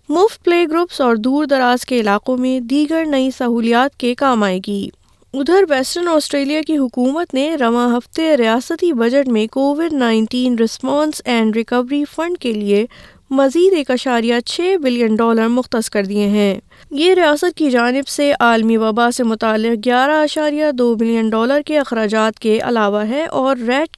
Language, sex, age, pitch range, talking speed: Urdu, female, 20-39, 230-295 Hz, 165 wpm